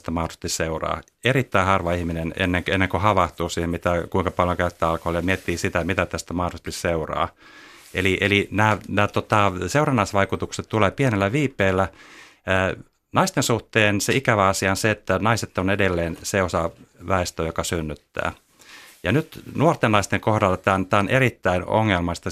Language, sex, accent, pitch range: Finnish, male, native, 85-110 Hz